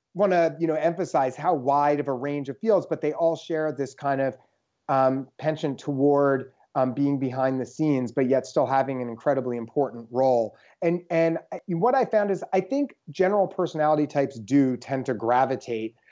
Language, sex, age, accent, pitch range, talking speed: English, male, 30-49, American, 130-170 Hz, 185 wpm